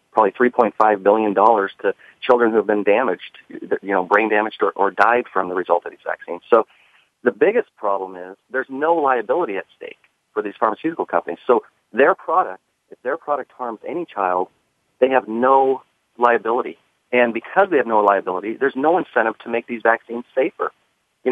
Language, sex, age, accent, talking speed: English, male, 40-59, American, 180 wpm